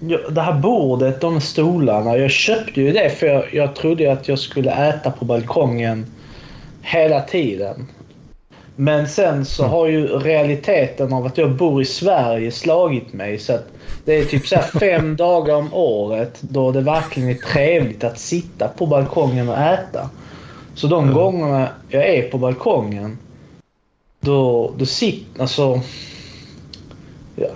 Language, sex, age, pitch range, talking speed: Swedish, male, 20-39, 125-160 Hz, 155 wpm